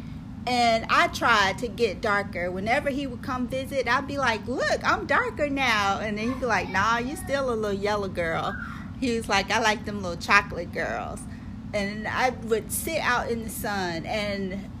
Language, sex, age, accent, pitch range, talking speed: English, female, 40-59, American, 200-245 Hz, 195 wpm